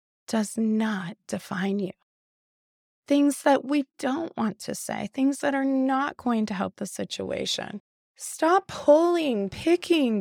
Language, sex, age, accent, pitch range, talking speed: English, female, 20-39, American, 215-290 Hz, 135 wpm